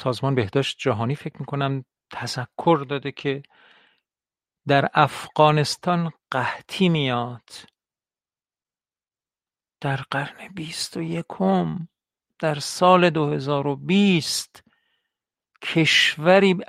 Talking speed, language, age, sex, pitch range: 80 wpm, Persian, 50-69, male, 130-165 Hz